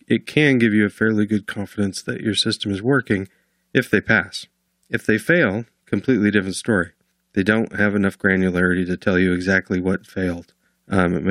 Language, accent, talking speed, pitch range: English, American, 180 wpm, 95-110 Hz